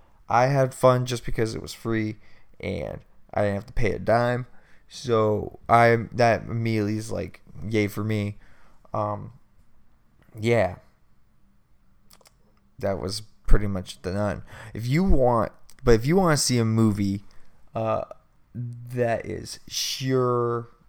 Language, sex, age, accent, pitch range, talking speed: English, male, 20-39, American, 100-120 Hz, 140 wpm